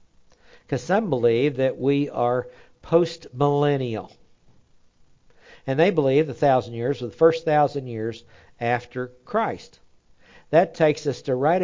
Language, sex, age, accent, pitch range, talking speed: English, male, 60-79, American, 120-150 Hz, 125 wpm